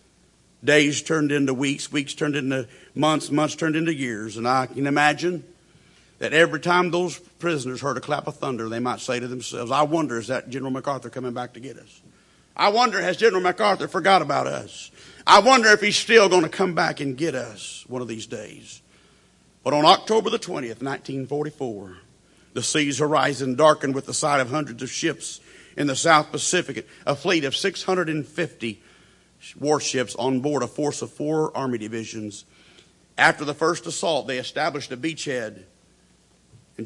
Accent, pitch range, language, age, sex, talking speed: American, 130-170 Hz, English, 50-69, male, 175 wpm